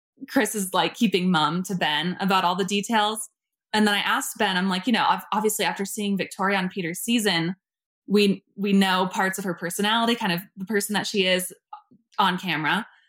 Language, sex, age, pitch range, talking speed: English, female, 20-39, 180-215 Hz, 195 wpm